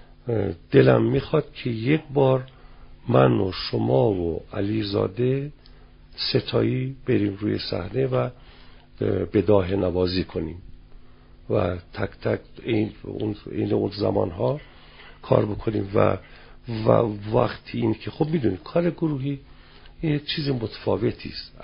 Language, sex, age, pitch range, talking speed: Persian, male, 50-69, 95-135 Hz, 110 wpm